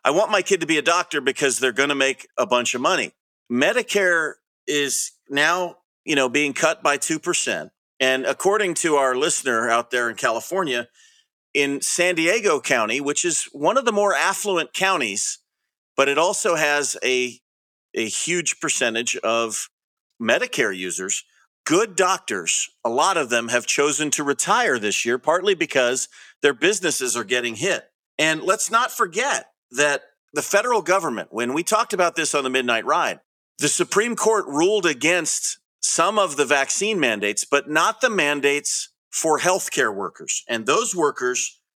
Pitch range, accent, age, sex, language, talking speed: 130-205 Hz, American, 40-59, male, English, 165 wpm